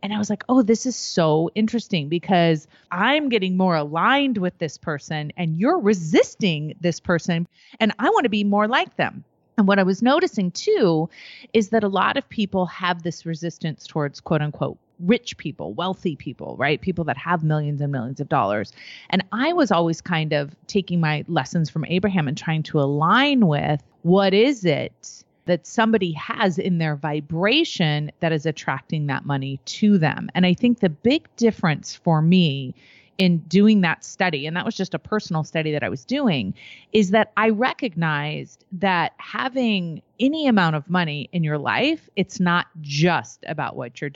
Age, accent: 30-49, American